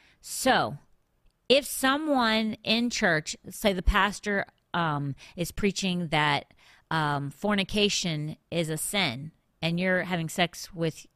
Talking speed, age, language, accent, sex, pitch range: 120 wpm, 40-59, English, American, female, 155-200 Hz